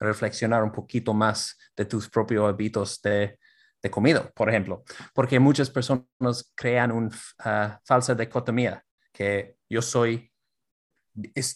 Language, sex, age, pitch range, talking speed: Spanish, male, 30-49, 110-130 Hz, 130 wpm